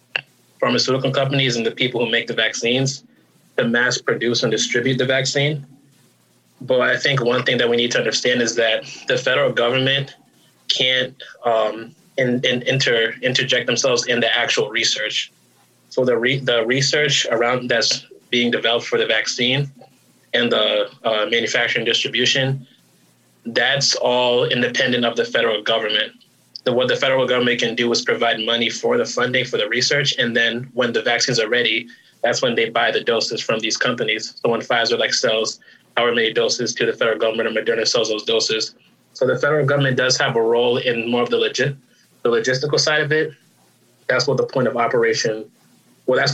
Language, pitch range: English, 120-190 Hz